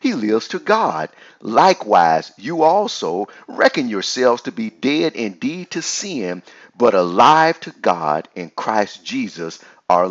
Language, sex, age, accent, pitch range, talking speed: English, male, 50-69, American, 105-180 Hz, 135 wpm